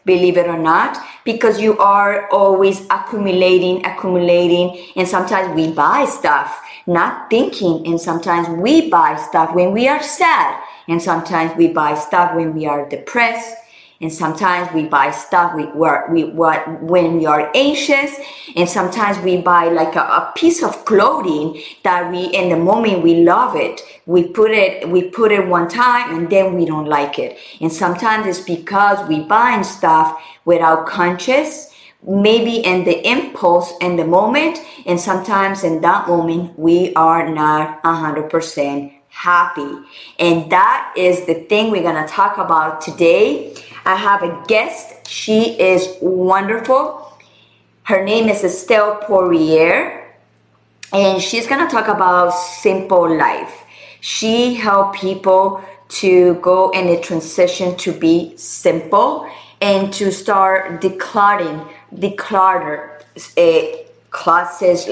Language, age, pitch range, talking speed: Spanish, 30-49, 170-210 Hz, 140 wpm